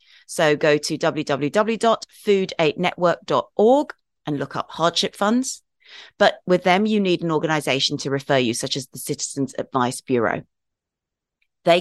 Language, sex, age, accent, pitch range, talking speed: English, female, 30-49, British, 150-210 Hz, 130 wpm